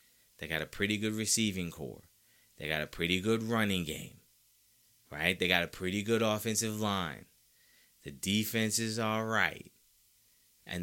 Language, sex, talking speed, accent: English, male, 155 wpm, American